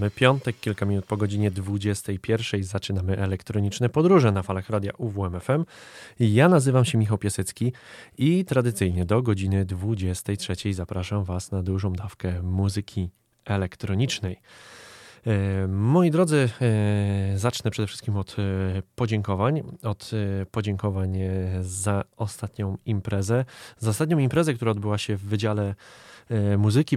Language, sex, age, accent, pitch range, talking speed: Polish, male, 20-39, native, 95-110 Hz, 115 wpm